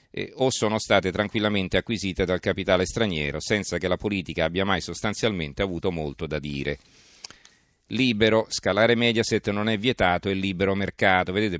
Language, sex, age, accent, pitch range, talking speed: Italian, male, 40-59, native, 85-105 Hz, 155 wpm